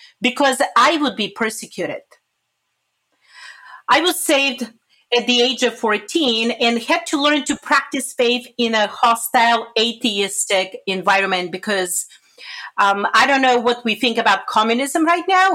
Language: Spanish